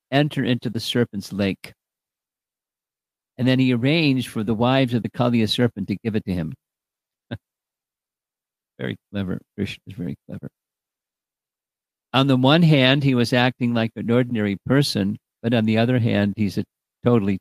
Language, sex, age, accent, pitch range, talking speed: English, male, 50-69, American, 100-125 Hz, 160 wpm